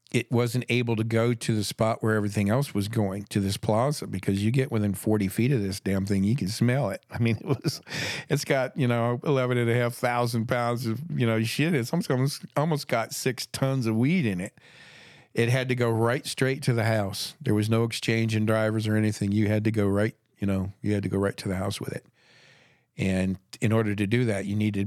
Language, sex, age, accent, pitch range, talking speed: English, male, 50-69, American, 100-120 Hz, 235 wpm